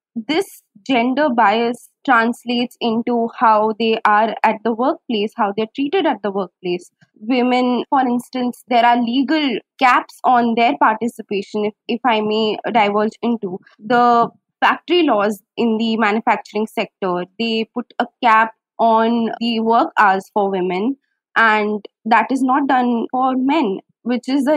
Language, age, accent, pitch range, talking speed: English, 20-39, Indian, 220-260 Hz, 145 wpm